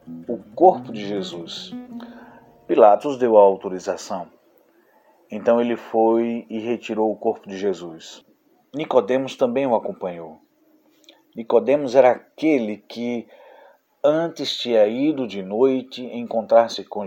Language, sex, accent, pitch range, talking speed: Portuguese, male, Brazilian, 105-135 Hz, 115 wpm